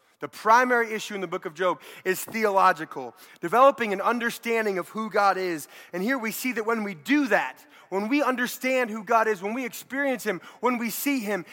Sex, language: male, English